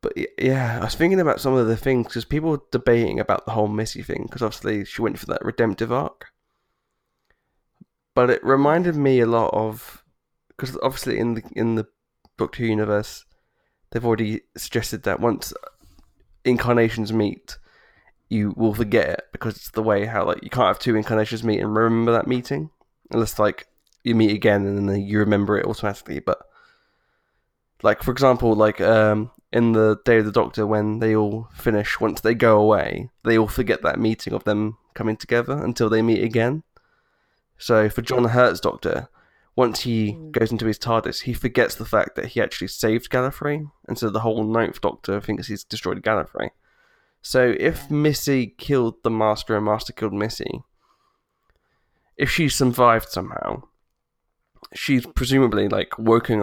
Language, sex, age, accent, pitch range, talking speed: English, male, 20-39, British, 110-125 Hz, 170 wpm